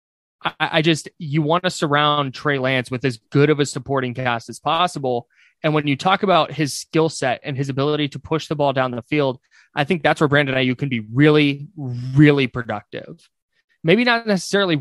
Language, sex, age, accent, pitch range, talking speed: English, male, 20-39, American, 120-150 Hz, 200 wpm